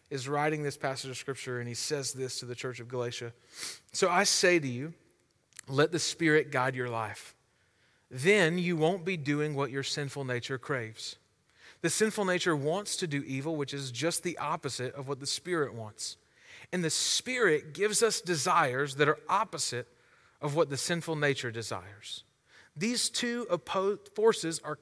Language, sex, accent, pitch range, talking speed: English, male, American, 140-195 Hz, 175 wpm